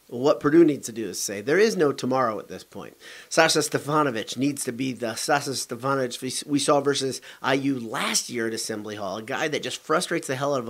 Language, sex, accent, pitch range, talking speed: English, male, American, 115-145 Hz, 225 wpm